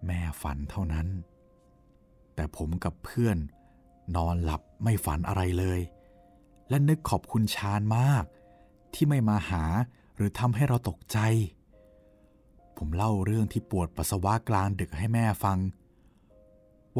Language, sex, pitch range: Thai, male, 85-110 Hz